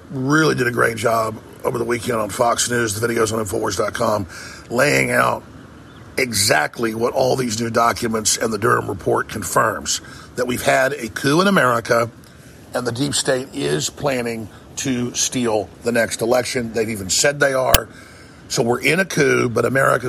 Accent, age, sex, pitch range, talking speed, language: American, 50-69, male, 110-125 Hz, 175 wpm, English